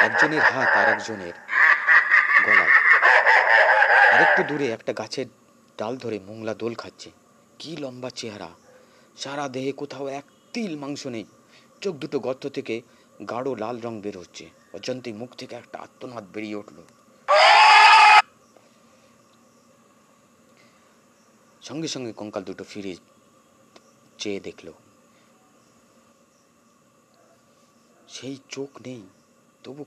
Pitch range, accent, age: 95-130 Hz, native, 30-49